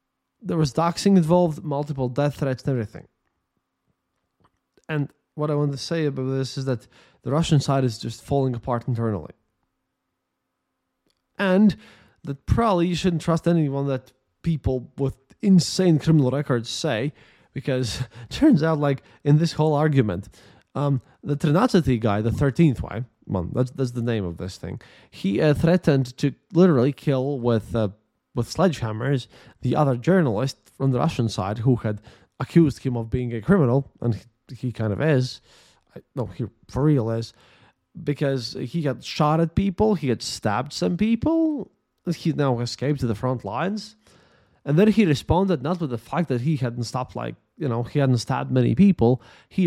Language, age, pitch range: English, 20-39, 120-155 Hz